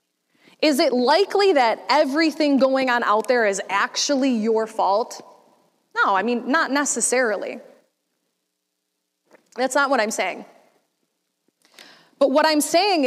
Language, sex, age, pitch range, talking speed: English, female, 20-39, 240-300 Hz, 125 wpm